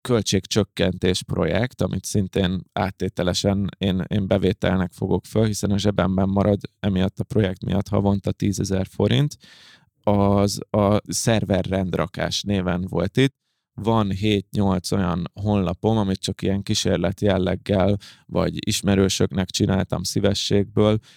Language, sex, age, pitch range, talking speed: Hungarian, male, 20-39, 95-110 Hz, 115 wpm